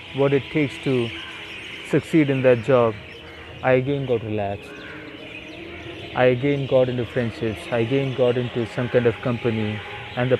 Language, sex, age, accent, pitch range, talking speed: English, male, 20-39, Indian, 110-130 Hz, 155 wpm